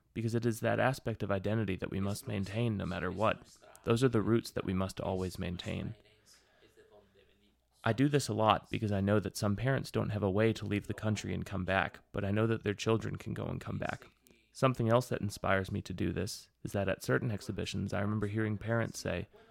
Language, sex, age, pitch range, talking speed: English, male, 30-49, 100-115 Hz, 230 wpm